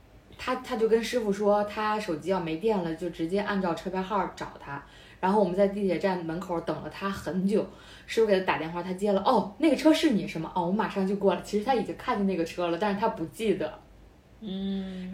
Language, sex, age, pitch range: Chinese, female, 20-39, 175-225 Hz